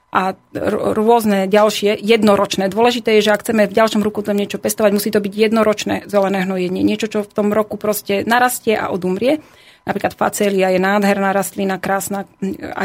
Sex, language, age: female, Slovak, 30-49